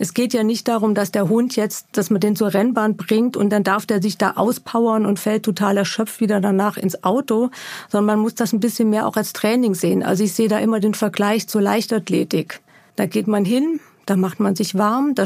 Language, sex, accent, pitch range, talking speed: German, female, German, 205-235 Hz, 235 wpm